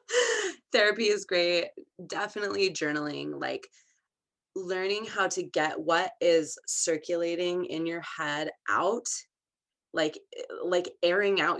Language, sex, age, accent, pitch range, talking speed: English, female, 20-39, American, 150-180 Hz, 110 wpm